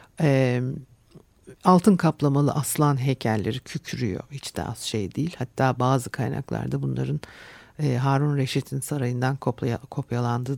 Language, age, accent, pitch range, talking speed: Turkish, 60-79, native, 125-165 Hz, 100 wpm